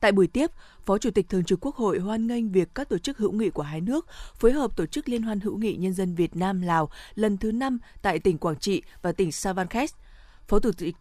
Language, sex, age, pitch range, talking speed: Vietnamese, female, 20-39, 180-230 Hz, 255 wpm